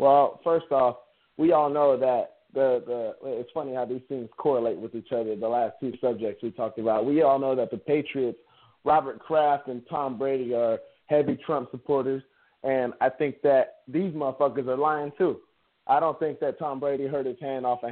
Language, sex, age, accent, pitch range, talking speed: English, male, 20-39, American, 135-160 Hz, 200 wpm